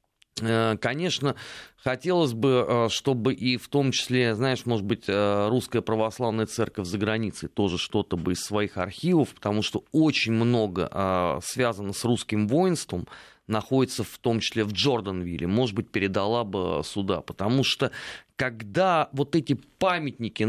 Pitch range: 110-140 Hz